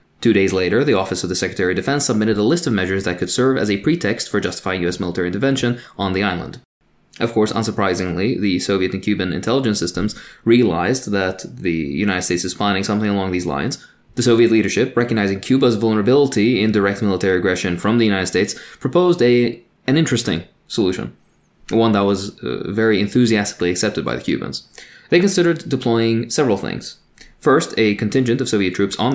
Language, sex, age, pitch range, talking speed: English, male, 20-39, 95-120 Hz, 185 wpm